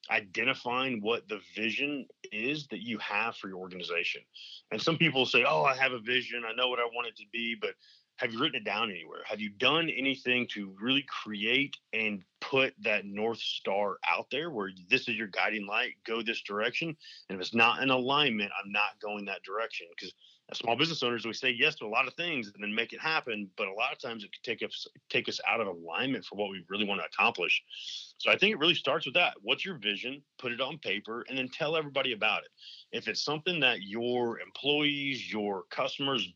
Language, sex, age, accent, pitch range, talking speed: English, male, 30-49, American, 105-135 Hz, 225 wpm